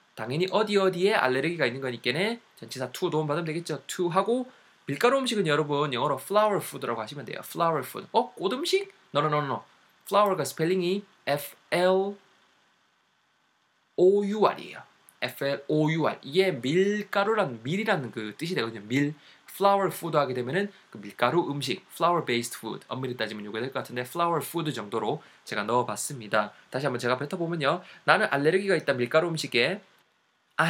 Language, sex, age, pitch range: Korean, male, 20-39, 135-190 Hz